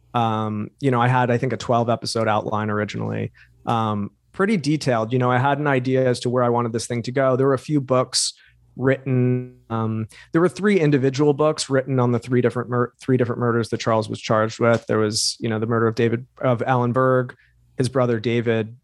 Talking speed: 225 wpm